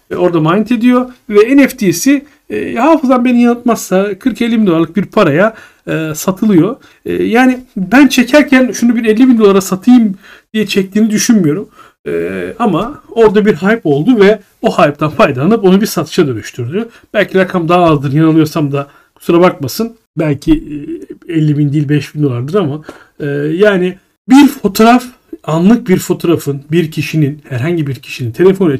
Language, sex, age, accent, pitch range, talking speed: Turkish, male, 40-59, native, 155-230 Hz, 150 wpm